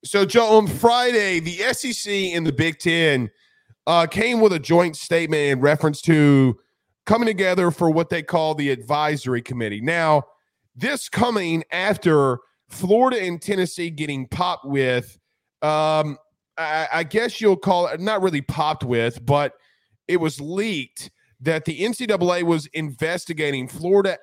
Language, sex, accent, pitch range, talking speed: English, male, American, 145-185 Hz, 145 wpm